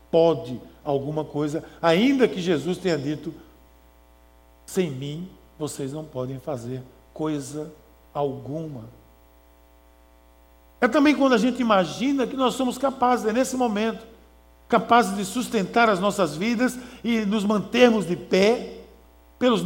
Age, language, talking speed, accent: 60-79, Portuguese, 120 wpm, Brazilian